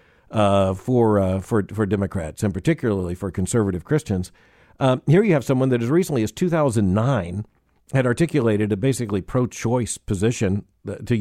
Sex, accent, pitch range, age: male, American, 105-140 Hz, 50-69